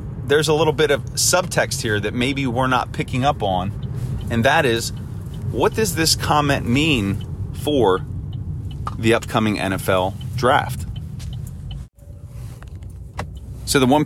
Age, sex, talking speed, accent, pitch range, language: 30-49, male, 130 wpm, American, 105-125 Hz, English